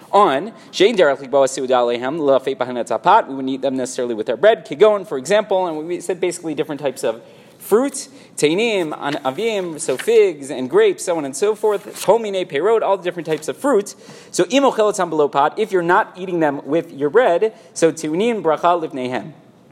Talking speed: 160 wpm